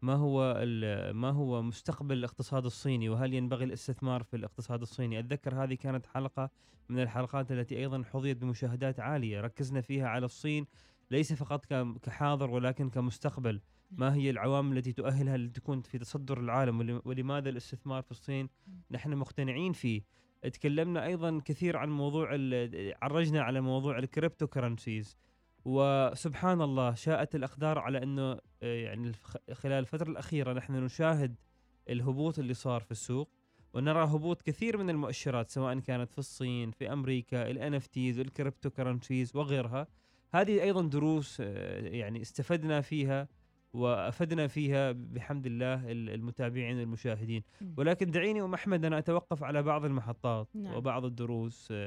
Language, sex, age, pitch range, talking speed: Arabic, male, 20-39, 125-145 Hz, 135 wpm